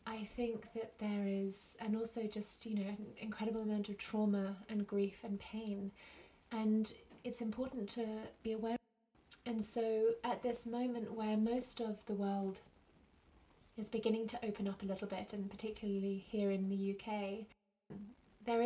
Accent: British